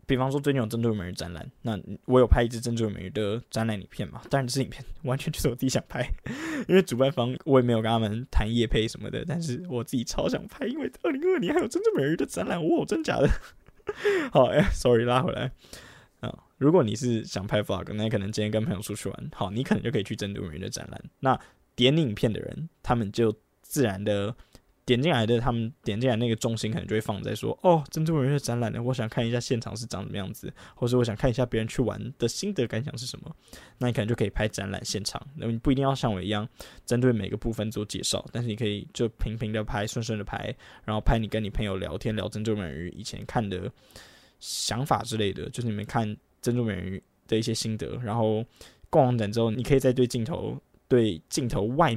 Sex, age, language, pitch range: male, 10-29, Chinese, 105-125 Hz